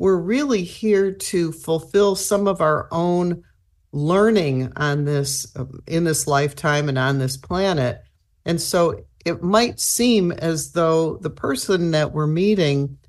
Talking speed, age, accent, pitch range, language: 140 wpm, 50-69, American, 140-185 Hz, English